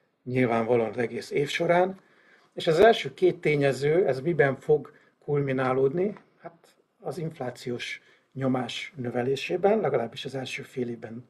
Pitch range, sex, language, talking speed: 125-145 Hz, male, Hungarian, 120 wpm